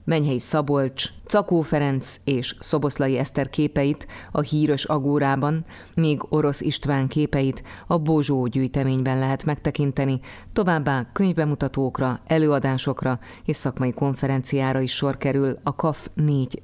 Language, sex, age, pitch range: Hungarian, female, 30-49, 130-150 Hz